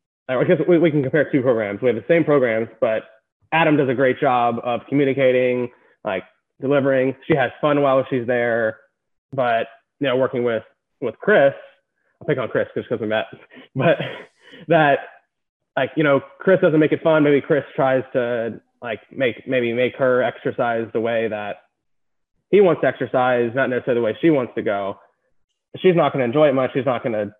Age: 20-39